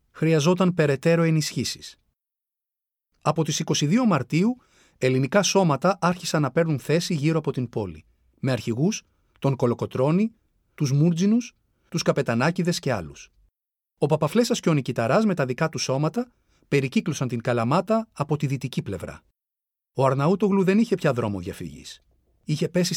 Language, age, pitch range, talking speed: Greek, 40-59, 130-185 Hz, 140 wpm